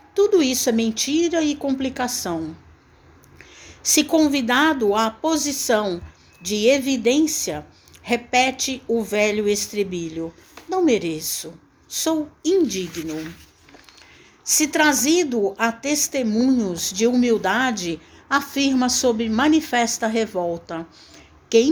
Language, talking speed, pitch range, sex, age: Portuguese, 85 wpm, 220-310 Hz, female, 60-79